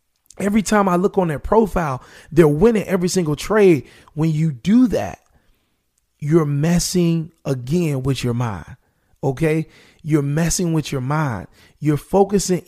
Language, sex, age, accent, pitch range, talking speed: English, male, 30-49, American, 145-175 Hz, 140 wpm